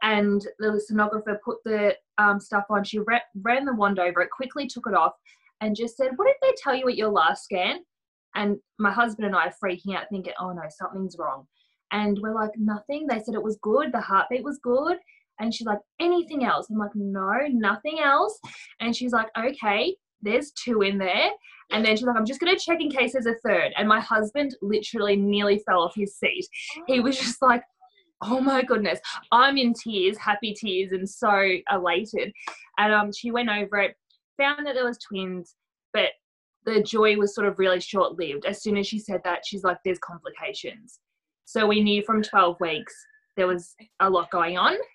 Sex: female